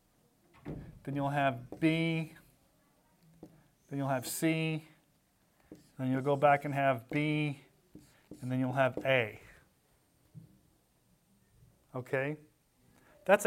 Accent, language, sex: American, English, male